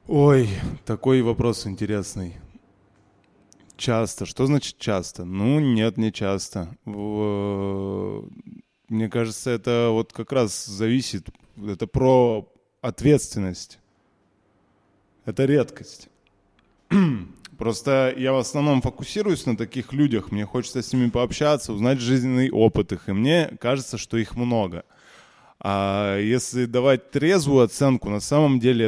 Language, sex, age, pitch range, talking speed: Russian, male, 20-39, 100-125 Hz, 115 wpm